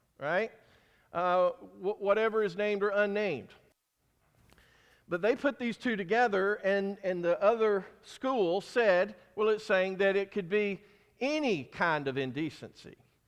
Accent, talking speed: American, 140 wpm